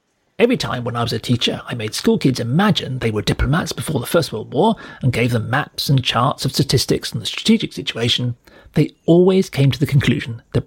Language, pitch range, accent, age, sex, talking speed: English, 125-180 Hz, British, 40-59, male, 220 wpm